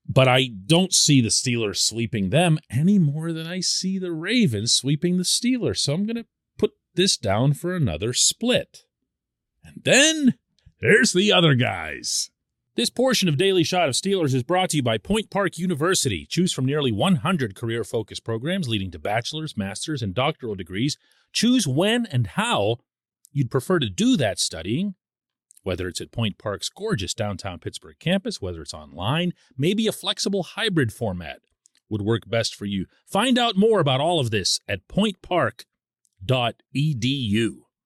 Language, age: English, 40-59